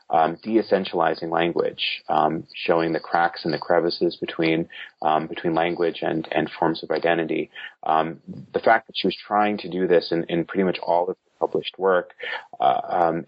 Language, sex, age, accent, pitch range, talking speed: English, male, 30-49, American, 85-105 Hz, 175 wpm